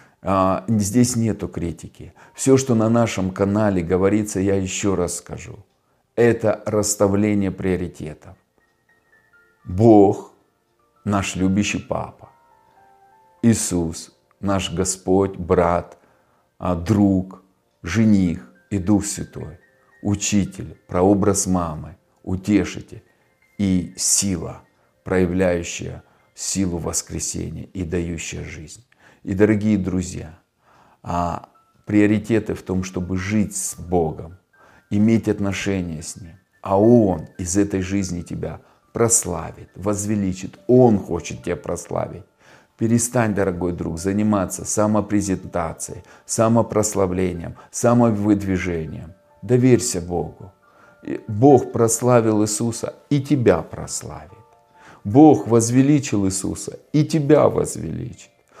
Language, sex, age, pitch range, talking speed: Russian, male, 40-59, 90-110 Hz, 90 wpm